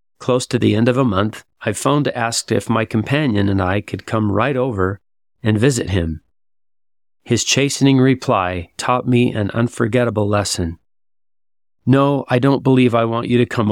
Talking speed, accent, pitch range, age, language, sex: 175 wpm, American, 100-125 Hz, 40-59, English, male